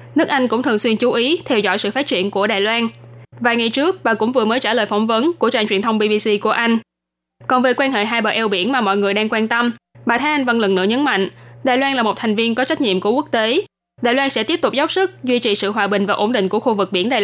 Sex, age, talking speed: female, 10-29, 300 wpm